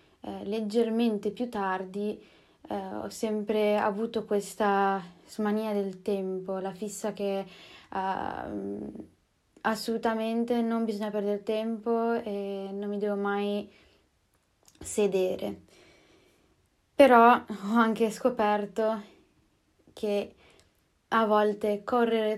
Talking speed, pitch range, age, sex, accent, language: 90 wpm, 195-220 Hz, 20-39, female, native, Italian